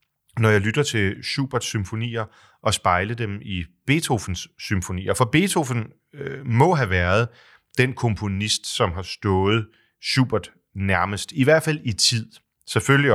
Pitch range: 100-130 Hz